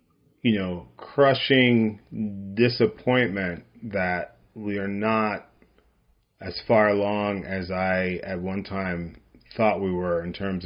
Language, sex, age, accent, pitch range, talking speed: English, male, 30-49, American, 90-110 Hz, 120 wpm